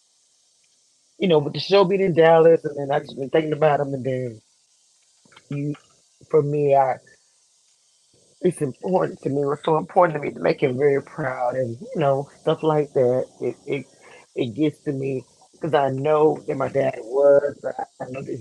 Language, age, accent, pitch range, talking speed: English, 30-49, American, 130-155 Hz, 190 wpm